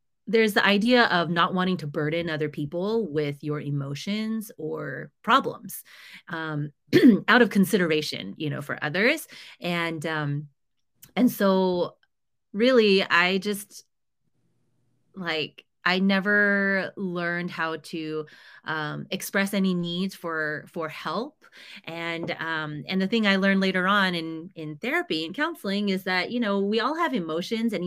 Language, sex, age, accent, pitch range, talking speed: English, female, 30-49, American, 155-195 Hz, 140 wpm